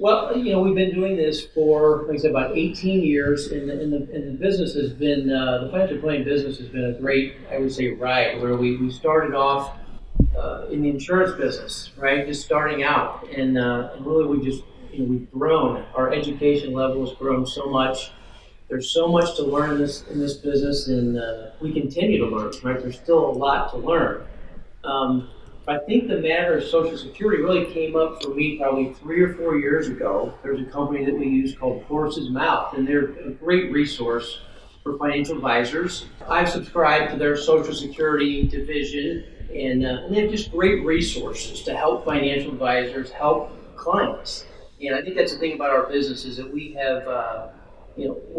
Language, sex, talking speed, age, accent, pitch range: English, male, 205 wpm, 40-59, American, 130-160 Hz